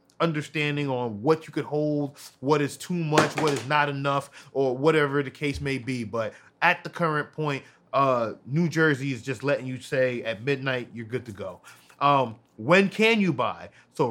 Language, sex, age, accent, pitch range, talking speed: English, male, 20-39, American, 130-160 Hz, 190 wpm